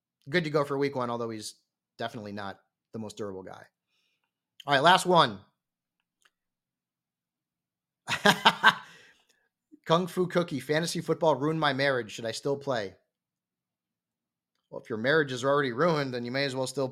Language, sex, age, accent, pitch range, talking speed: English, male, 30-49, American, 125-170 Hz, 155 wpm